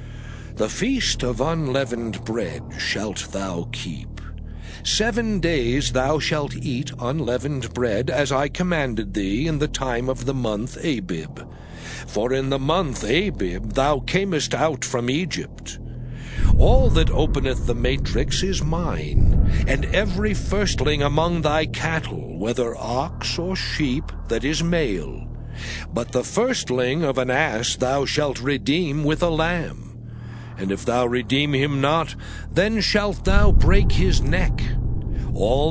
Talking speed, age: 135 wpm, 60-79